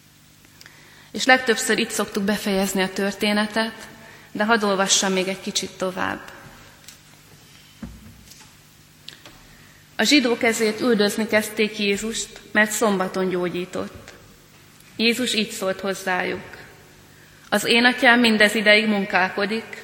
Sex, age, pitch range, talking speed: female, 30-49, 190-220 Hz, 95 wpm